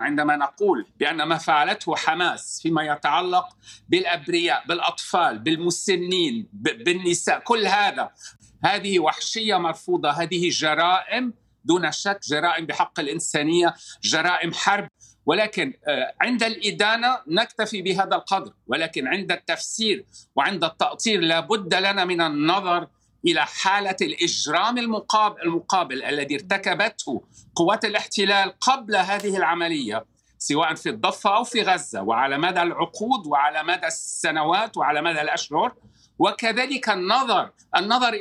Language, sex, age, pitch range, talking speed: Arabic, male, 50-69, 165-215 Hz, 110 wpm